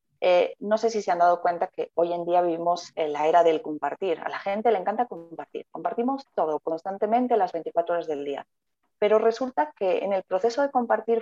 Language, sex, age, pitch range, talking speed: Spanish, female, 30-49, 180-235 Hz, 215 wpm